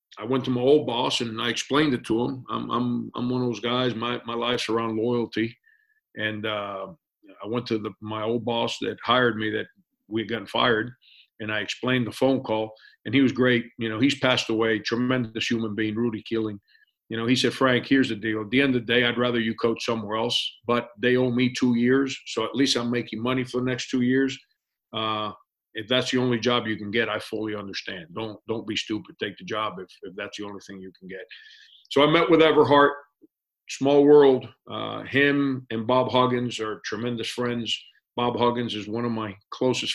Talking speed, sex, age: 220 wpm, male, 50-69